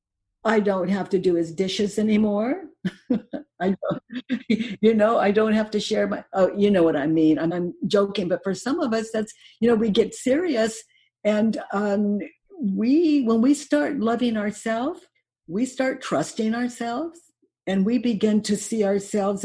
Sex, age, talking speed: female, 60-79, 175 wpm